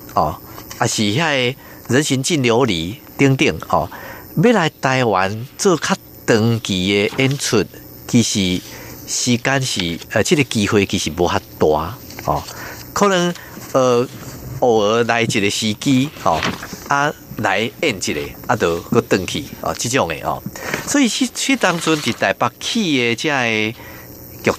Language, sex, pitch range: Chinese, male, 100-140 Hz